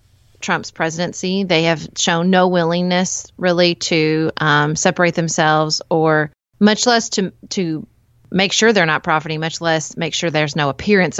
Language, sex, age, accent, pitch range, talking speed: English, female, 30-49, American, 150-180 Hz, 155 wpm